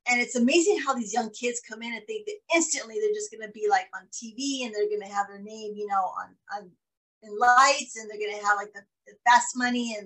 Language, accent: English, American